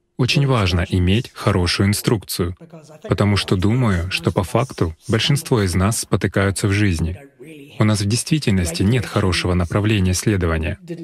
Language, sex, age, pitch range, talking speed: Russian, male, 20-39, 95-130 Hz, 135 wpm